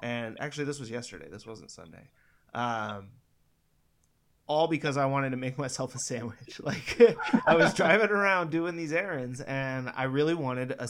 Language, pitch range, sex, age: English, 115-145 Hz, male, 20-39